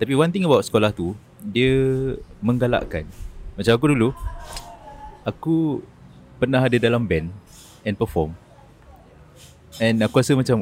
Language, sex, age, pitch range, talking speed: Malay, male, 30-49, 85-115 Hz, 125 wpm